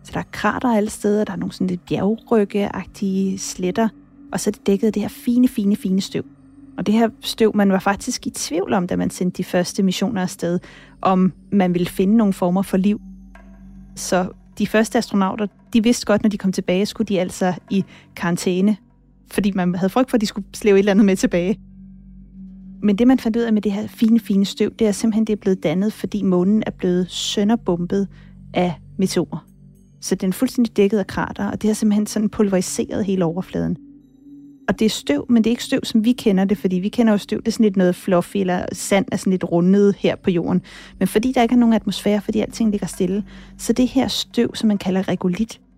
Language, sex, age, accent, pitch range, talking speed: Danish, female, 30-49, native, 190-220 Hz, 225 wpm